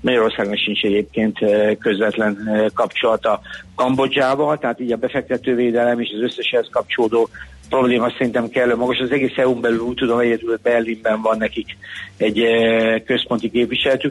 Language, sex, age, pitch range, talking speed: Hungarian, male, 60-79, 115-135 Hz, 140 wpm